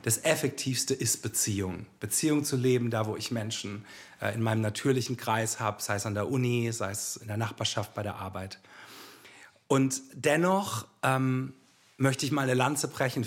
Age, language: 40-59, German